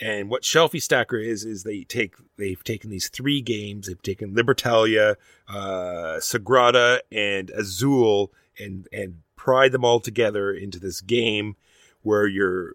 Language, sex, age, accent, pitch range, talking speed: English, male, 30-49, American, 90-120 Hz, 145 wpm